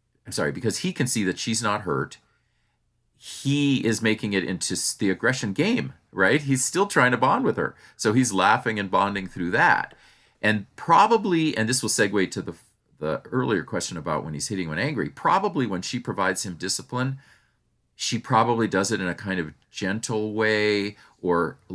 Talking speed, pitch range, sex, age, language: 190 wpm, 90-115 Hz, male, 40-59, English